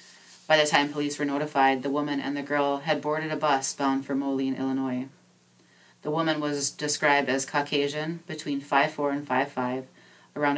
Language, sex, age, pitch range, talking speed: English, female, 30-49, 130-150 Hz, 170 wpm